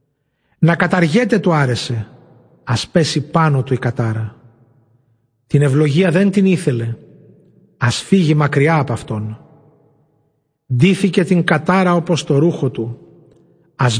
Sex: male